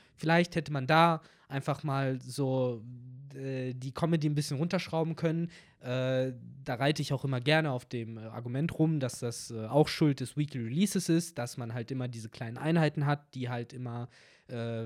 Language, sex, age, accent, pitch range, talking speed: German, male, 20-39, German, 120-150 Hz, 185 wpm